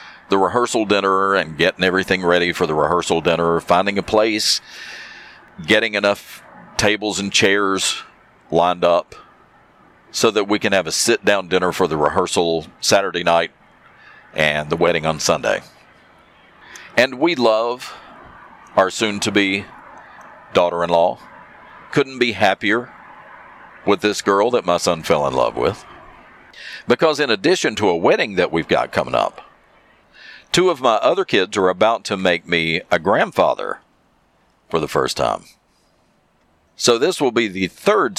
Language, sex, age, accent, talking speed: English, male, 50-69, American, 145 wpm